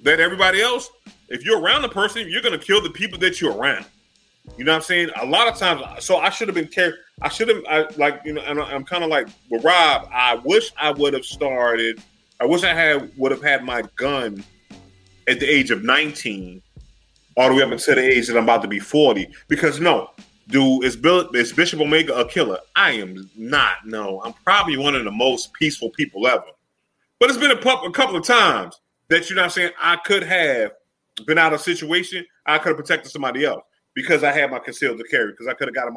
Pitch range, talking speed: 130-180 Hz, 235 wpm